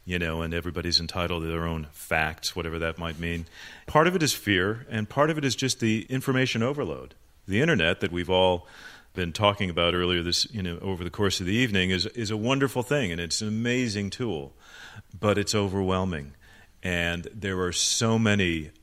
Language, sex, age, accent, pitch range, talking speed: English, male, 40-59, American, 85-105 Hz, 200 wpm